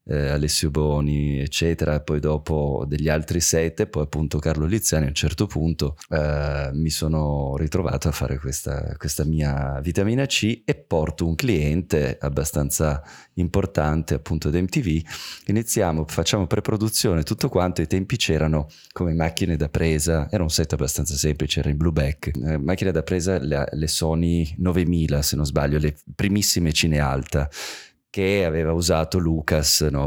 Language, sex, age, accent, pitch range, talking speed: Italian, male, 20-39, native, 75-90 Hz, 150 wpm